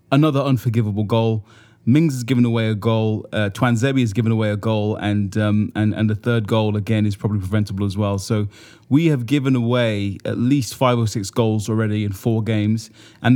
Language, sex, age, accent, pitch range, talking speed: English, male, 20-39, British, 110-130 Hz, 200 wpm